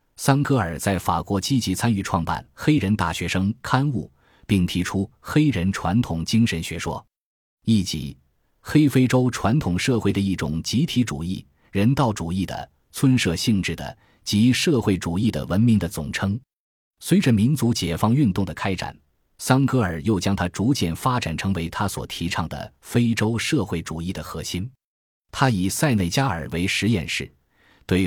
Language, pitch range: Chinese, 85-115 Hz